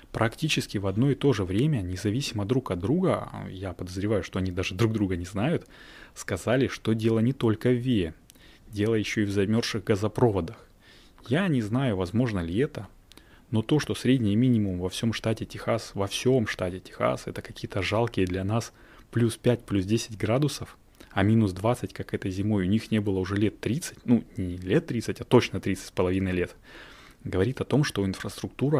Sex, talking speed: male, 190 wpm